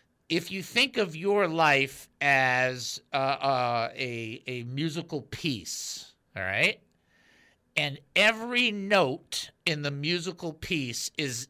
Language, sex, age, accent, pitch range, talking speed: English, male, 50-69, American, 130-175 Hz, 120 wpm